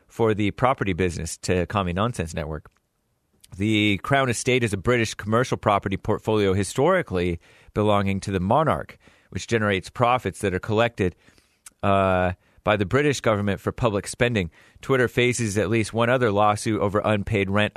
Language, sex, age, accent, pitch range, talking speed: English, male, 30-49, American, 95-125 Hz, 155 wpm